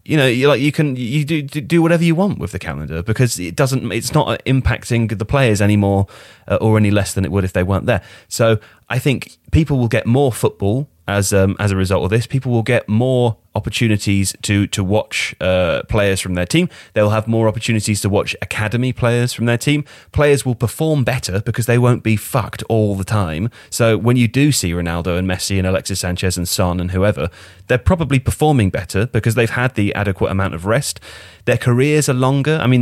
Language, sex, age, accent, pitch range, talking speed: English, male, 30-49, British, 95-120 Hz, 215 wpm